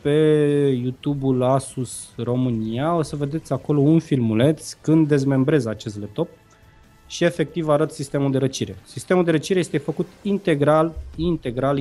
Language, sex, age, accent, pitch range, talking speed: Romanian, male, 20-39, native, 120-155 Hz, 135 wpm